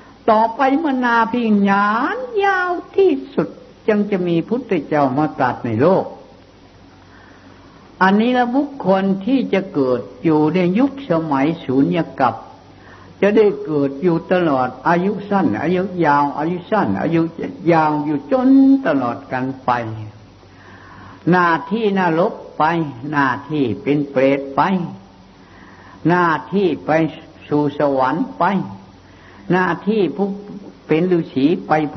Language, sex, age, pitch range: Thai, female, 60-79, 120-200 Hz